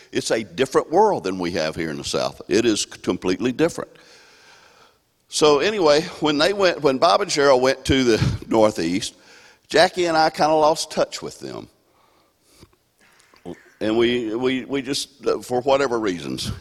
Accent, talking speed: American, 165 wpm